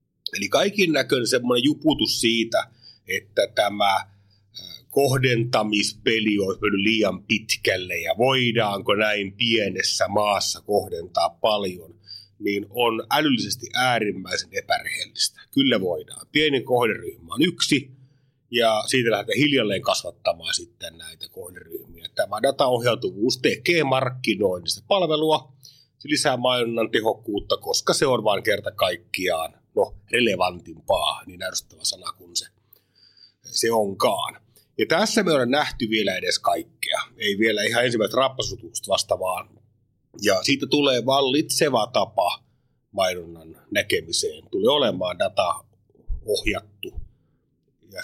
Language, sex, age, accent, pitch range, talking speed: Finnish, male, 30-49, native, 105-150 Hz, 110 wpm